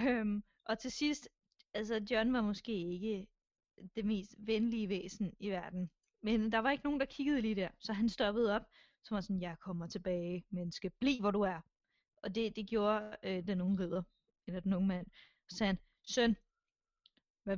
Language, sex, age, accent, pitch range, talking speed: Danish, female, 20-39, native, 205-270 Hz, 195 wpm